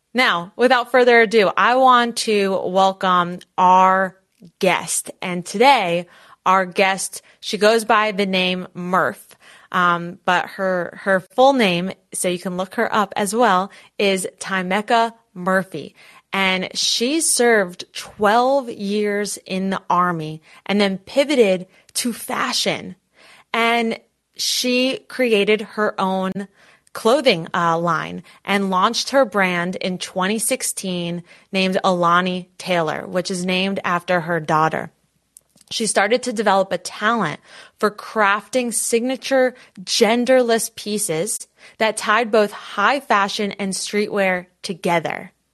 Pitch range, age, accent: 185-230 Hz, 20-39, American